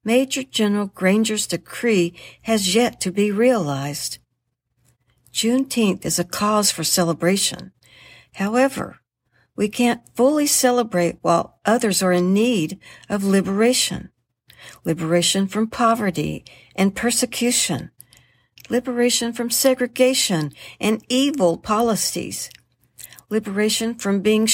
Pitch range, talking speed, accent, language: 145-215 Hz, 100 wpm, American, English